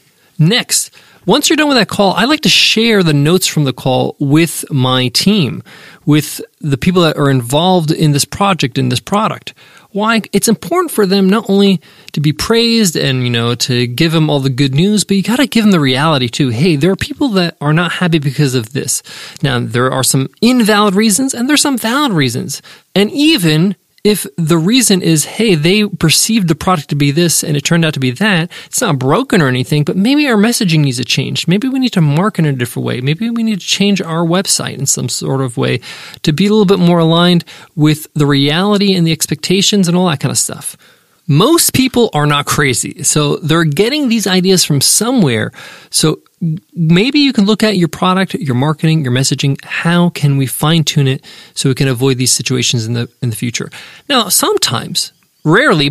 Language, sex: English, male